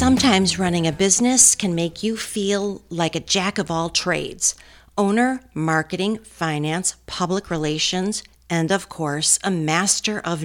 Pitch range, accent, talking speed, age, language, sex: 160-210 Hz, American, 125 wpm, 50-69, English, female